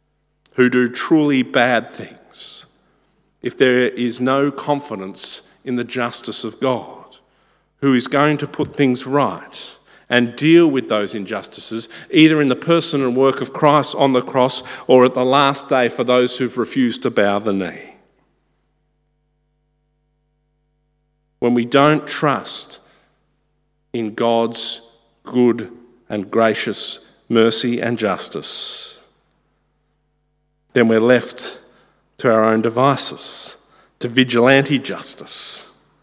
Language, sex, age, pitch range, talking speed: English, male, 50-69, 115-145 Hz, 120 wpm